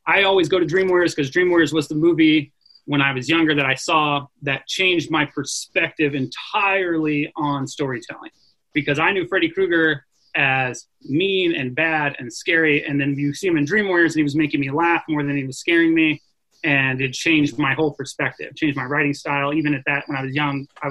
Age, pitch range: 30-49, 140-165 Hz